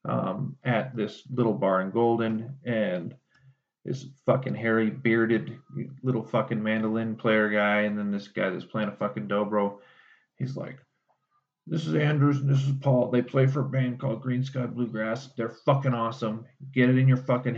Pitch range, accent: 110-130 Hz, American